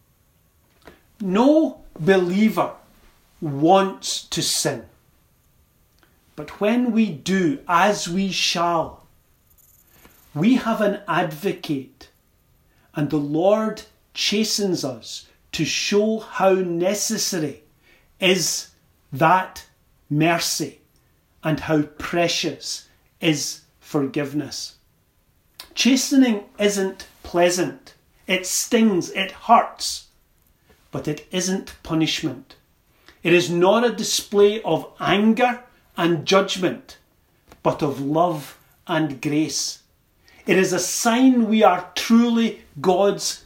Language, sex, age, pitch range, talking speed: English, male, 40-59, 155-205 Hz, 90 wpm